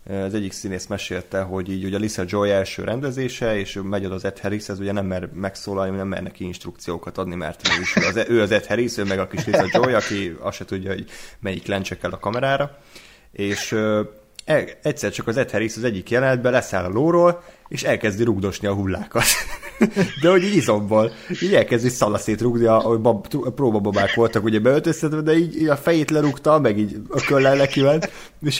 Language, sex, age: Hungarian, male, 30-49